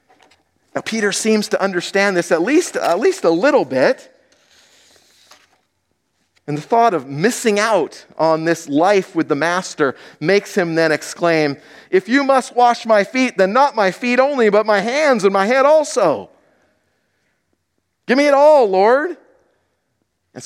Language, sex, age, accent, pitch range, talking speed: English, male, 50-69, American, 165-245 Hz, 155 wpm